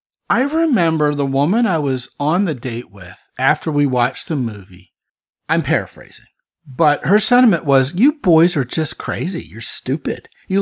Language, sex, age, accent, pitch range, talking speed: English, male, 40-59, American, 130-185 Hz, 165 wpm